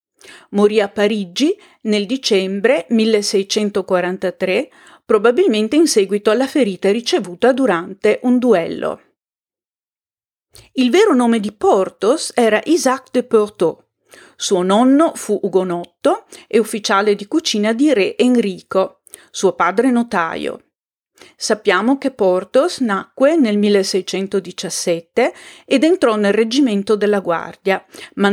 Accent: native